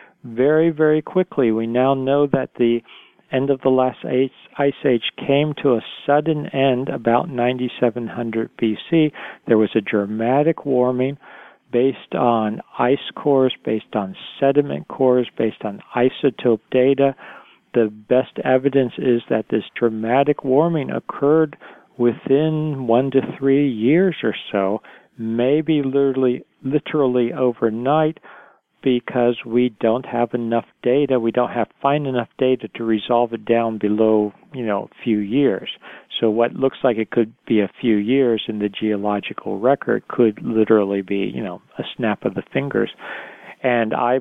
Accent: American